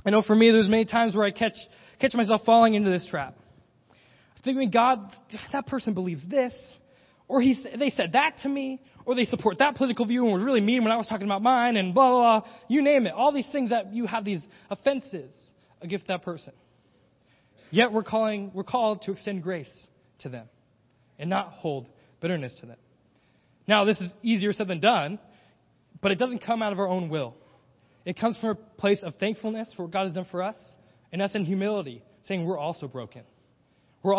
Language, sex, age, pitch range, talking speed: English, male, 20-39, 165-230 Hz, 205 wpm